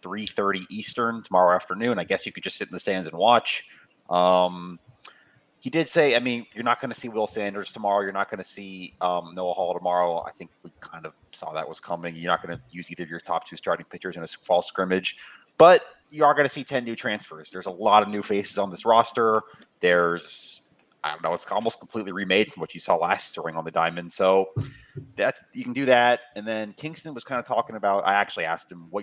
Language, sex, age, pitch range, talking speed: English, male, 30-49, 90-120 Hz, 245 wpm